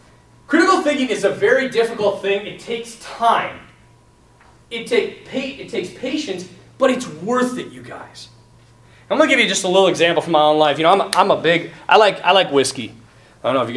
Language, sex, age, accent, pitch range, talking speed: English, male, 30-49, American, 140-215 Hz, 220 wpm